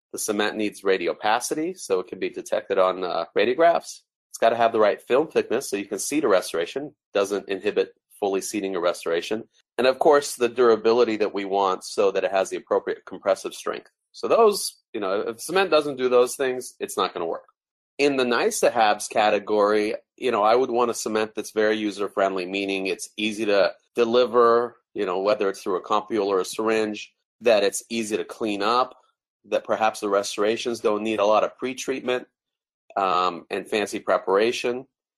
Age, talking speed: 30-49, 190 wpm